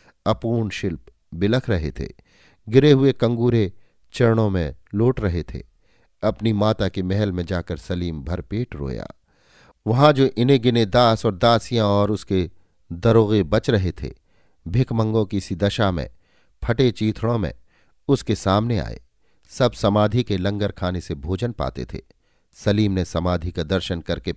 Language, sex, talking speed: Hindi, male, 150 wpm